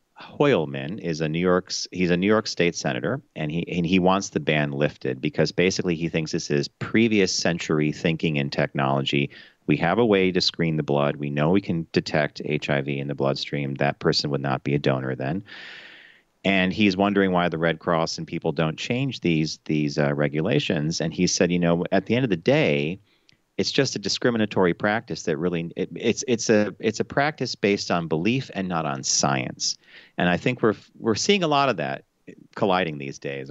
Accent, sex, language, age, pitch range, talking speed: American, male, English, 40-59, 75-95 Hz, 205 wpm